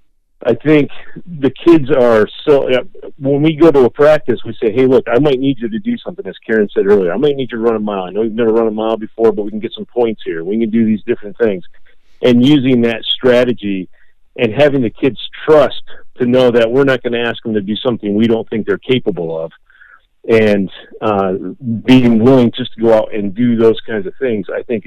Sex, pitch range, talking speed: male, 105-125 Hz, 240 wpm